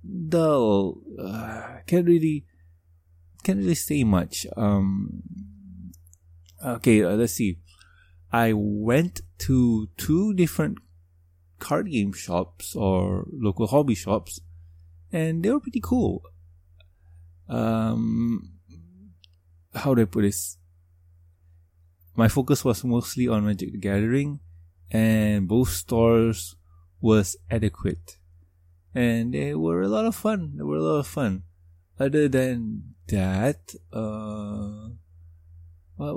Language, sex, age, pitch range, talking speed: English, male, 20-39, 85-115 Hz, 110 wpm